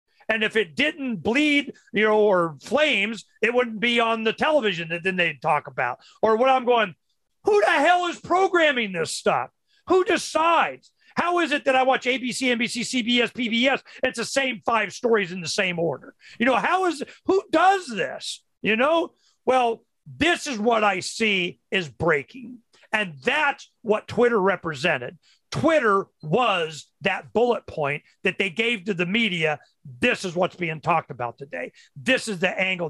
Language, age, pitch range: English, 40-59, 190-285 Hz